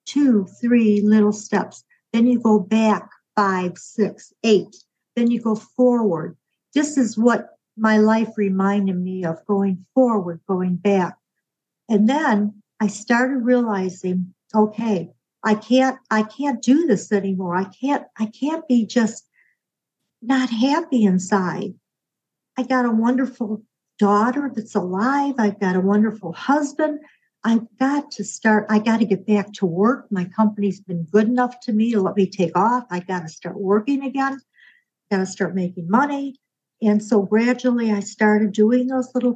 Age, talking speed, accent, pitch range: 60-79, 155 wpm, American, 195-245 Hz